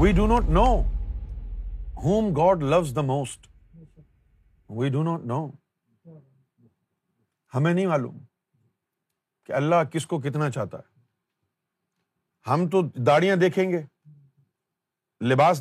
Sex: male